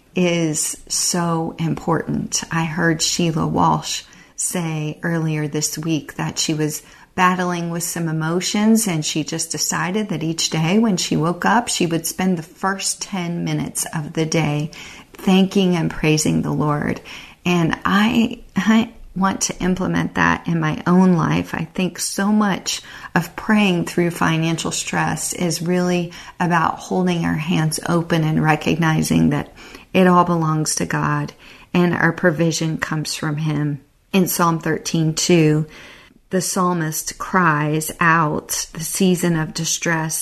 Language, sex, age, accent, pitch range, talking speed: English, female, 40-59, American, 155-185 Hz, 145 wpm